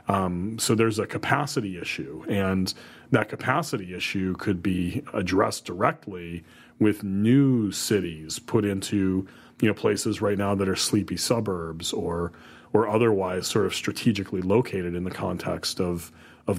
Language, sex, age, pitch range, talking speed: English, male, 30-49, 90-110 Hz, 145 wpm